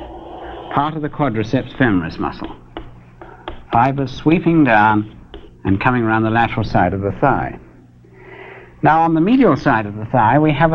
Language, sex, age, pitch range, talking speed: English, male, 60-79, 115-160 Hz, 155 wpm